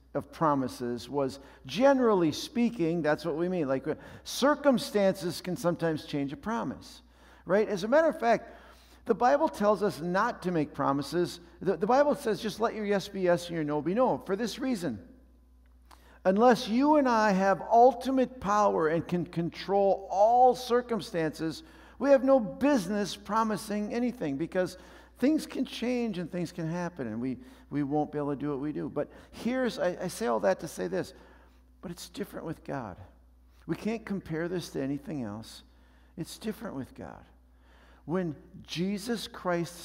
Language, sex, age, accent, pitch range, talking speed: English, male, 50-69, American, 150-230 Hz, 170 wpm